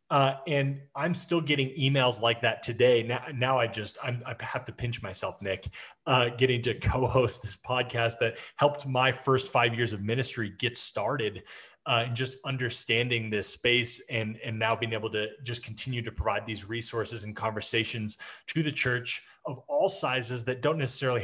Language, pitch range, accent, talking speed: English, 115-135 Hz, American, 180 wpm